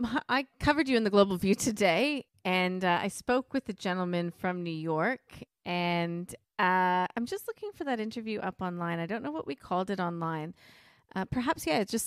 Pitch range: 165-210 Hz